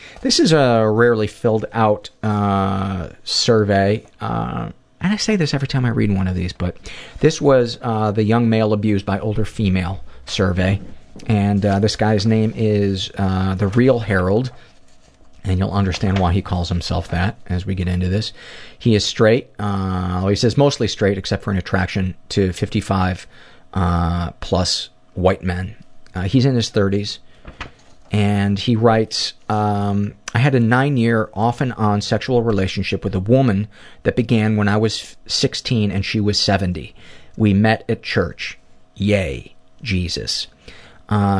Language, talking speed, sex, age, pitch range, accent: English, 165 wpm, male, 40-59, 95-115 Hz, American